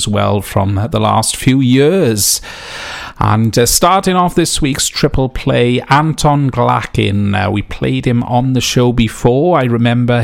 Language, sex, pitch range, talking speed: English, male, 110-135 Hz, 160 wpm